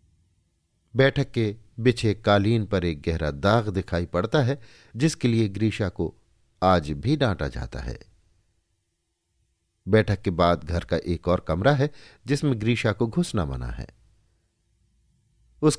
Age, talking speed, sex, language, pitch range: 50-69, 135 wpm, male, Hindi, 90-130 Hz